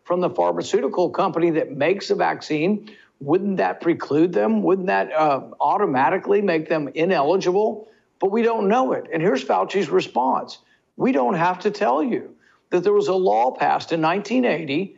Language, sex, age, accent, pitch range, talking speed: English, male, 50-69, American, 155-220 Hz, 170 wpm